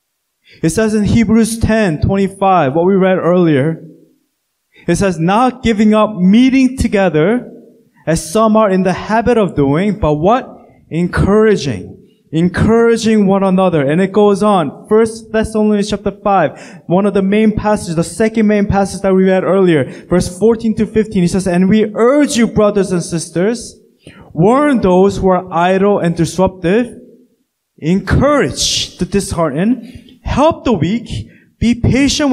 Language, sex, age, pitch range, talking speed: English, male, 20-39, 180-225 Hz, 150 wpm